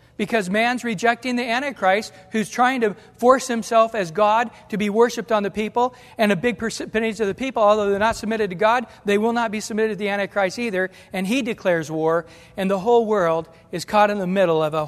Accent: American